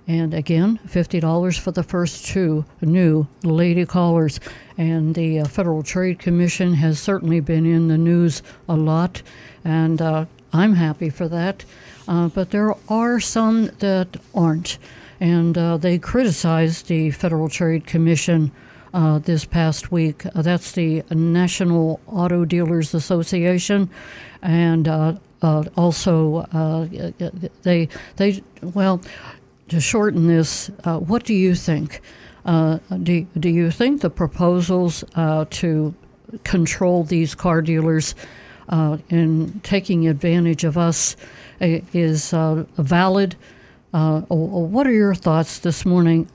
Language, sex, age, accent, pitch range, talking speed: English, female, 60-79, American, 160-180 Hz, 130 wpm